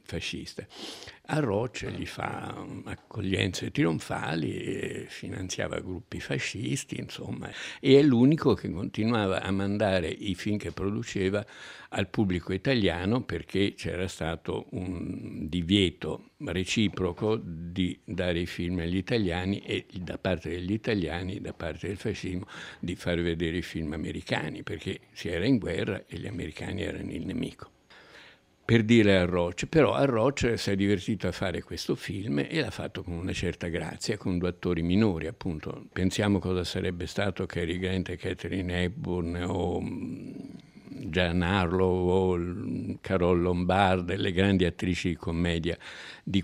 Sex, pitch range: male, 85-95 Hz